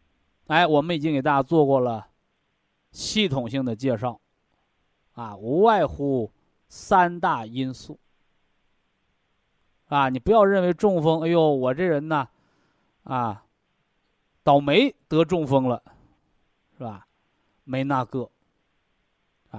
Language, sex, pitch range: Chinese, male, 130-195 Hz